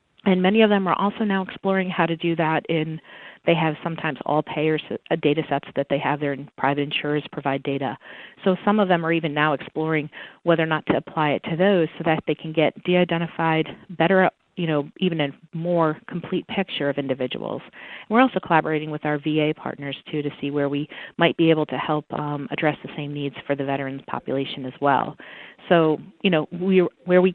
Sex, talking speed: female, 215 wpm